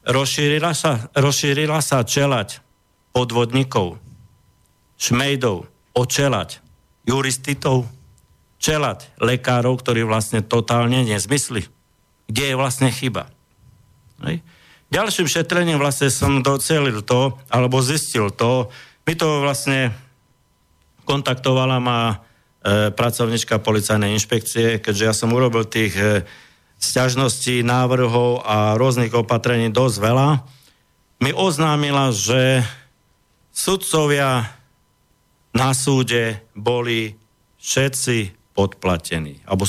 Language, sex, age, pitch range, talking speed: Slovak, male, 50-69, 110-135 Hz, 90 wpm